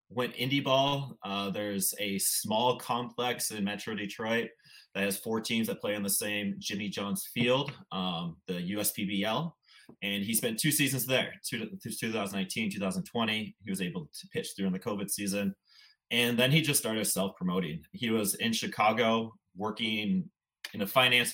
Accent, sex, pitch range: American, male, 95-130 Hz